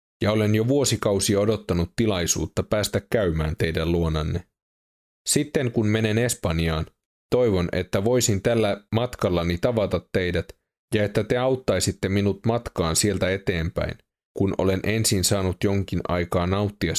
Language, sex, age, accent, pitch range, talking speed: Finnish, male, 30-49, native, 90-110 Hz, 125 wpm